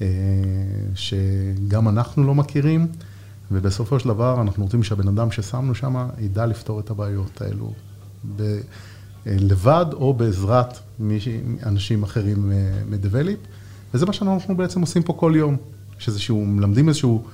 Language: Hebrew